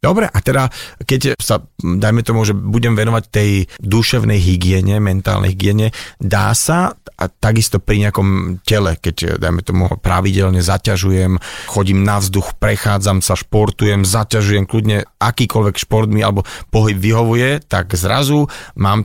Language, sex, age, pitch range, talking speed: Slovak, male, 40-59, 100-115 Hz, 140 wpm